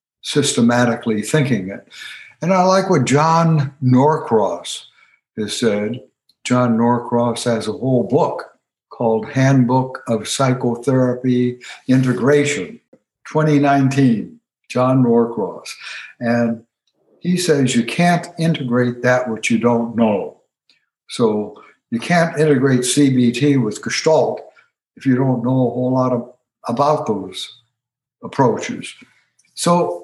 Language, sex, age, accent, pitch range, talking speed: English, male, 60-79, American, 120-145 Hz, 110 wpm